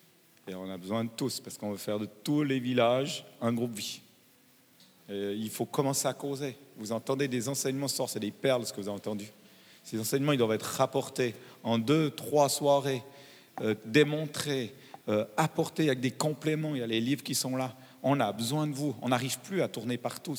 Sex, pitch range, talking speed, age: male, 115-145 Hz, 210 wpm, 40-59